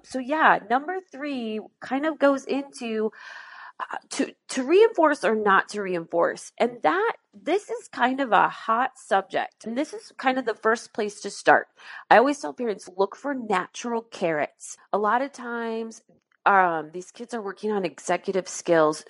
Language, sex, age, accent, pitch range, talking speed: English, female, 30-49, American, 190-255 Hz, 175 wpm